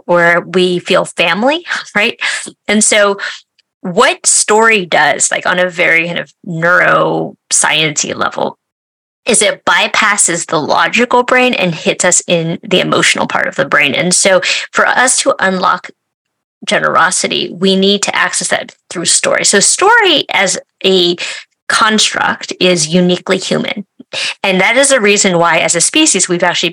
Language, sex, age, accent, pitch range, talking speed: English, female, 20-39, American, 180-230 Hz, 150 wpm